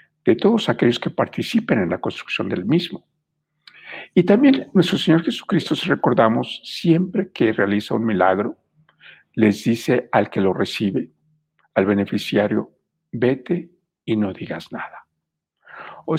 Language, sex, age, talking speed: Spanish, male, 60-79, 135 wpm